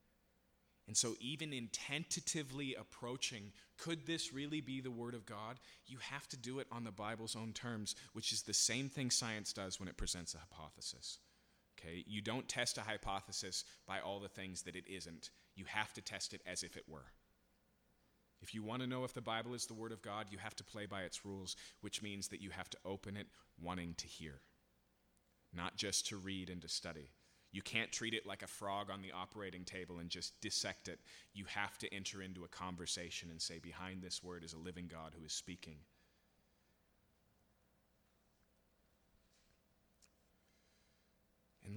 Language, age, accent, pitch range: English, 30-49, American, 90-110 Hz